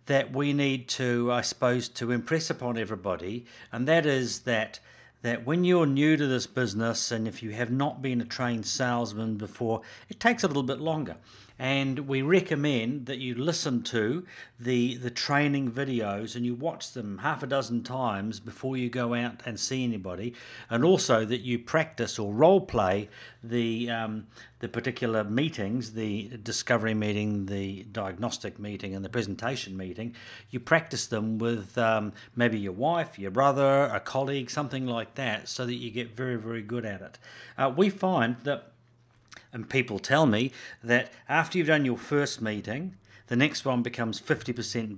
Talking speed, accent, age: 175 wpm, British, 50-69